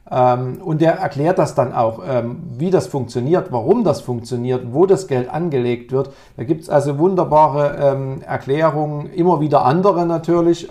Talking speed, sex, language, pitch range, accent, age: 150 wpm, male, German, 120-150 Hz, German, 50-69